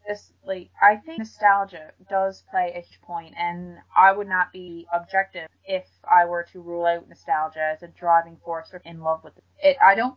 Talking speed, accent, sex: 205 wpm, American, female